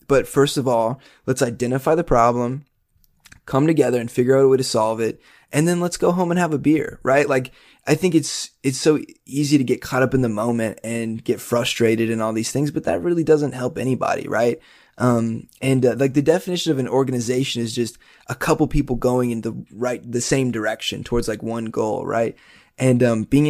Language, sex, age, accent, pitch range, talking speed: English, male, 20-39, American, 120-150 Hz, 215 wpm